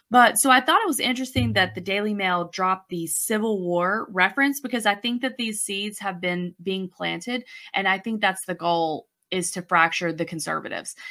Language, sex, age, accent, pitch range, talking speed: English, female, 20-39, American, 180-220 Hz, 200 wpm